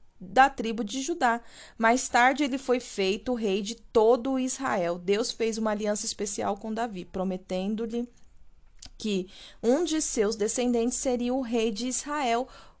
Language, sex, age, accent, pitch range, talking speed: Portuguese, female, 20-39, Brazilian, 205-255 Hz, 145 wpm